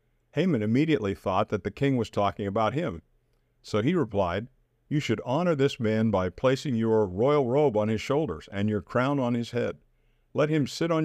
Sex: male